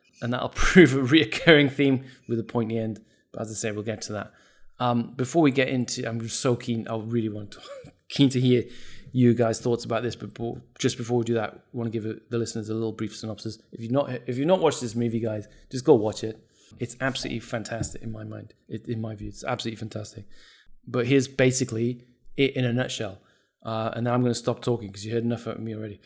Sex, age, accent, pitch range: male, 20-39, British, 115-130 Hz